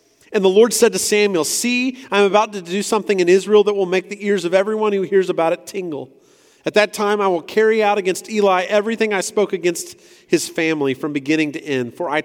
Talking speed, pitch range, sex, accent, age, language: 230 wpm, 145-200 Hz, male, American, 40-59, English